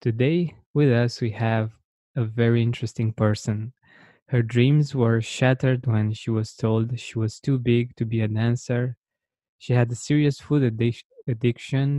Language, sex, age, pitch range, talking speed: English, male, 20-39, 115-135 Hz, 155 wpm